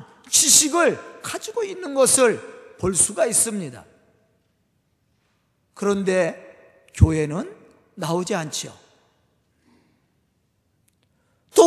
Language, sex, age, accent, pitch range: Korean, male, 40-59, native, 215-330 Hz